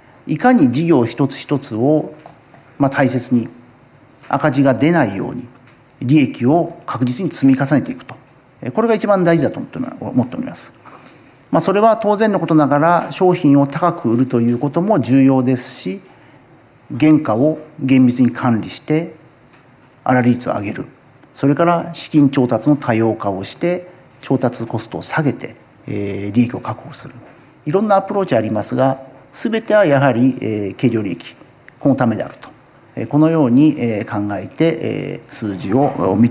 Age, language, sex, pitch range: 50-69, Japanese, male, 120-155 Hz